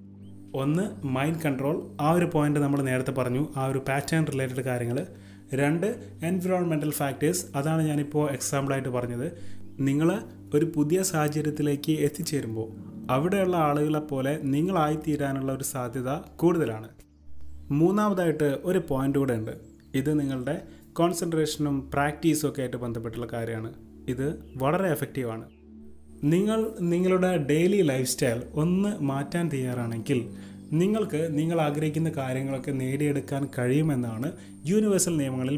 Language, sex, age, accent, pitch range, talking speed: Malayalam, male, 30-49, native, 120-155 Hz, 110 wpm